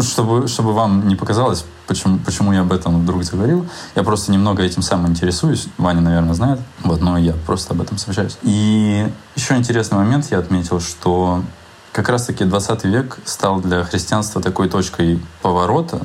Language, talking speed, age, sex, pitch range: Russian, 170 wpm, 20-39, male, 90-105 Hz